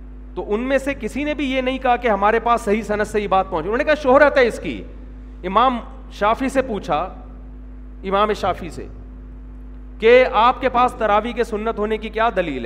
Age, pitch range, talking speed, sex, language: 40-59, 185-235 Hz, 200 wpm, male, Urdu